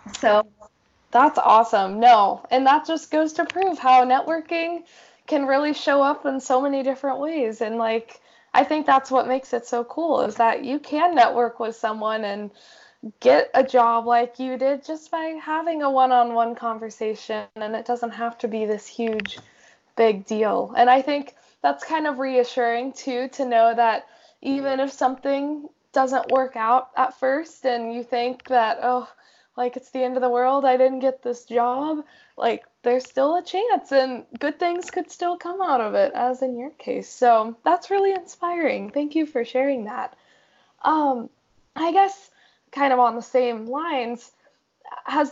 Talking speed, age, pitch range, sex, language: 180 wpm, 10-29, 240-295 Hz, female, English